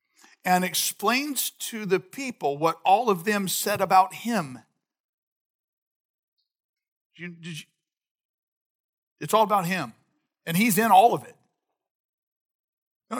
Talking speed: 105 wpm